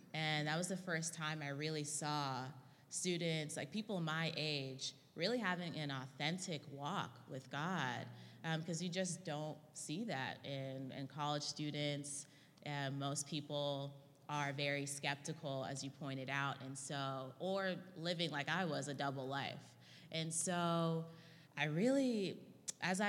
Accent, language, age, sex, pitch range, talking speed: American, English, 20-39, female, 140-165 Hz, 150 wpm